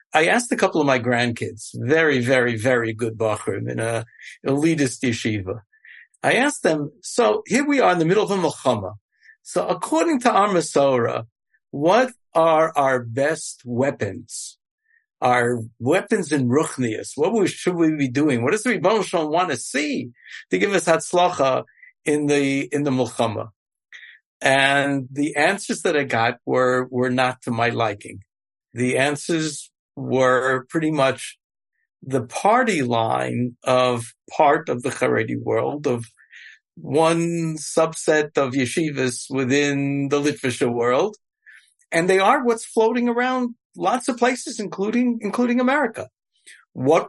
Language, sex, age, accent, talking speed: English, male, 60-79, American, 140 wpm